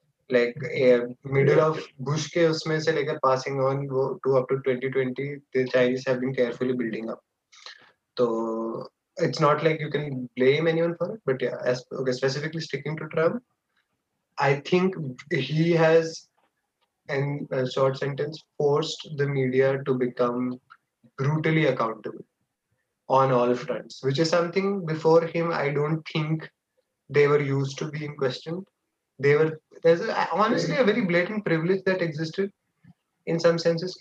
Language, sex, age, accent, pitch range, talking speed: Hindi, male, 20-39, native, 130-160 Hz, 155 wpm